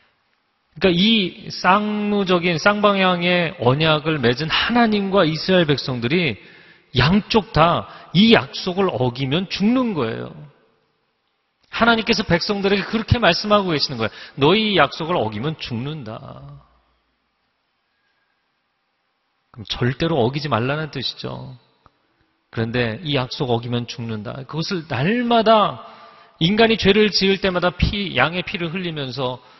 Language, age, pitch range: Korean, 40-59, 120-185 Hz